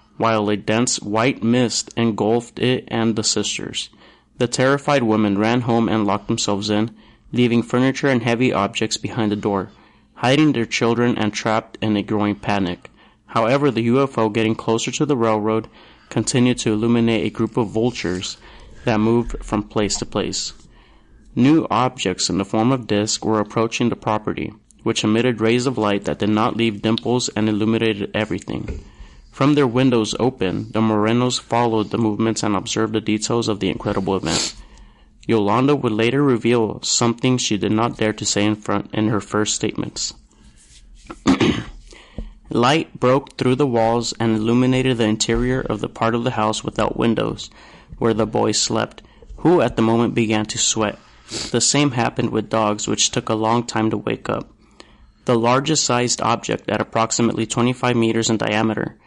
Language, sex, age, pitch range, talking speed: English, male, 30-49, 105-120 Hz, 170 wpm